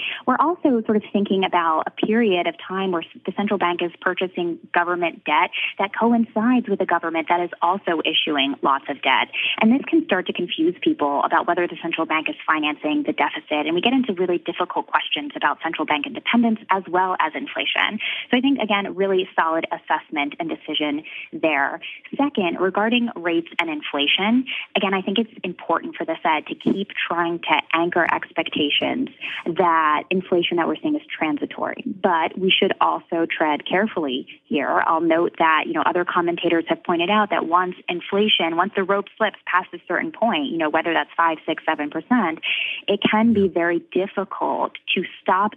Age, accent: 20-39, American